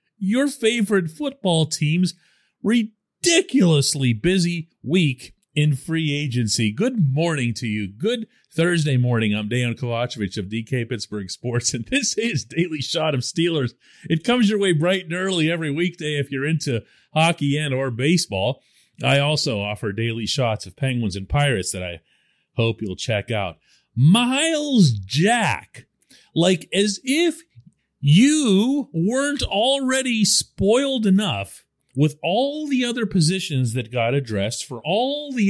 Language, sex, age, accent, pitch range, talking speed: English, male, 40-59, American, 120-195 Hz, 140 wpm